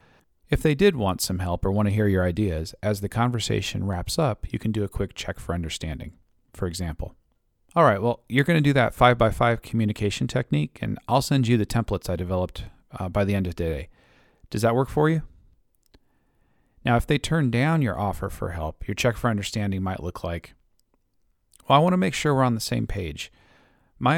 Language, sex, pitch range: English, male, 90-125 Hz